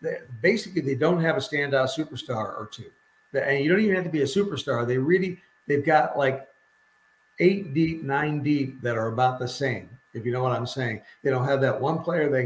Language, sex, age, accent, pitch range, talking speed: English, male, 50-69, American, 120-150 Hz, 215 wpm